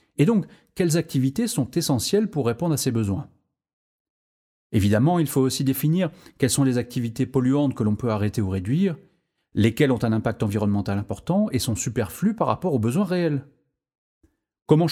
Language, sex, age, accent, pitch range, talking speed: French, male, 30-49, French, 115-165 Hz, 170 wpm